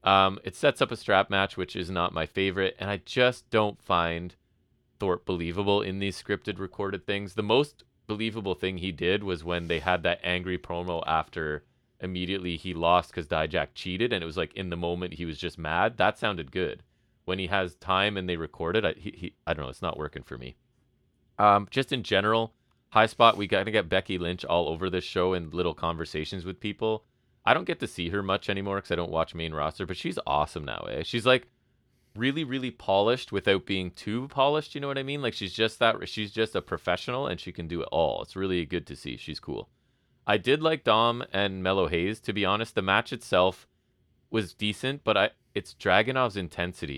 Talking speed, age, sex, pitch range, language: 220 wpm, 30-49, male, 85-110 Hz, English